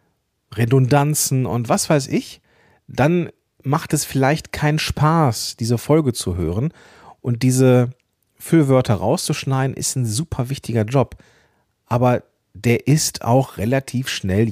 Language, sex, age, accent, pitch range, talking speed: German, male, 40-59, German, 105-145 Hz, 125 wpm